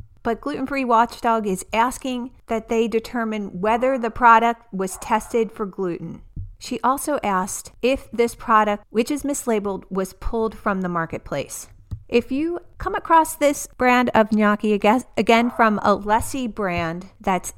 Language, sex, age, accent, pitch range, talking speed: English, female, 40-59, American, 190-245 Hz, 145 wpm